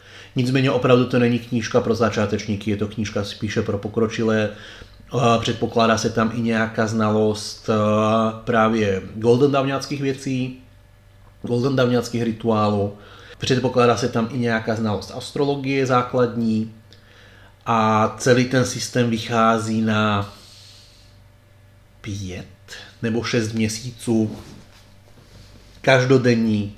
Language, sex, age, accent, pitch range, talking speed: Czech, male, 30-49, native, 100-125 Hz, 100 wpm